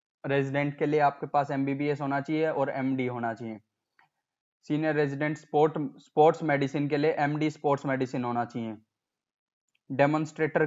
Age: 20-39